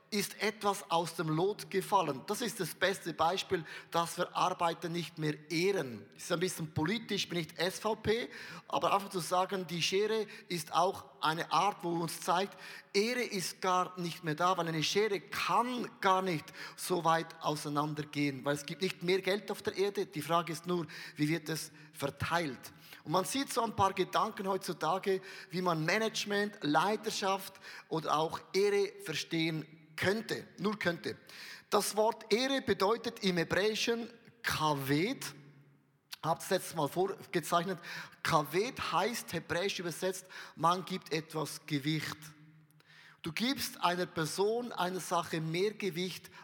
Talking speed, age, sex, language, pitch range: 150 wpm, 20-39, male, German, 160-200 Hz